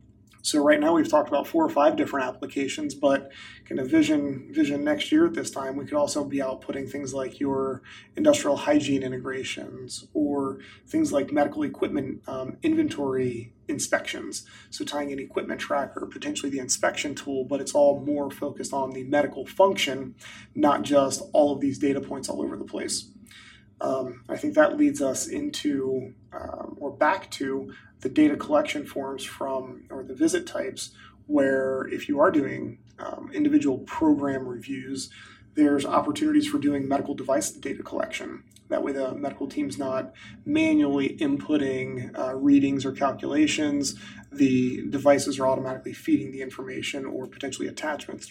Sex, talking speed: male, 160 wpm